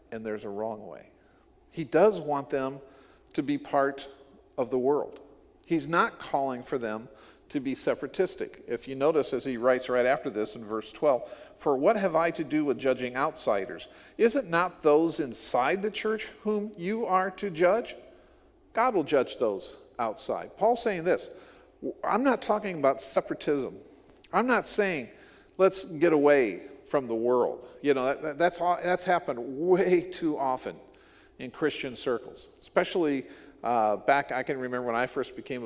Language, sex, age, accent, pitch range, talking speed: English, male, 50-69, American, 125-185 Hz, 165 wpm